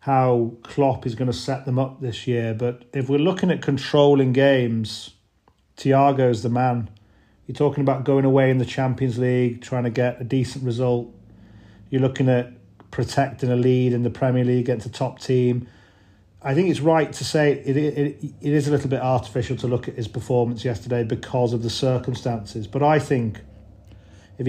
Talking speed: 195 wpm